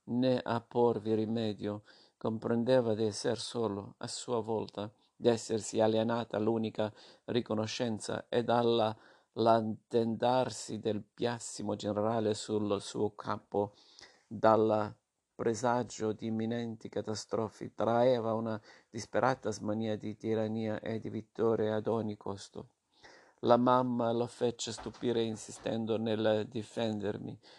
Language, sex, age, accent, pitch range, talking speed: Italian, male, 50-69, native, 110-120 Hz, 105 wpm